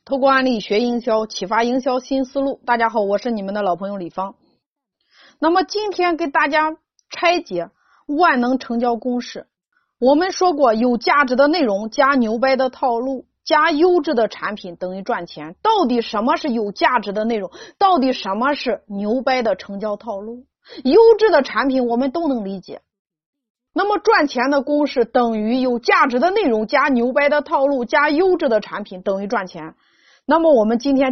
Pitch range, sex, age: 215-295 Hz, female, 30-49